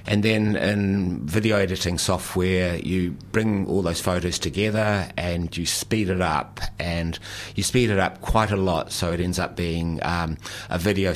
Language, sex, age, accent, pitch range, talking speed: English, male, 60-79, Australian, 85-100 Hz, 175 wpm